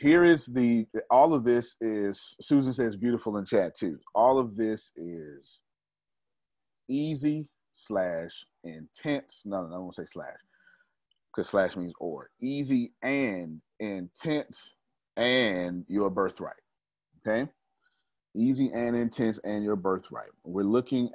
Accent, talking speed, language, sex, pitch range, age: American, 130 wpm, English, male, 90-125 Hz, 30-49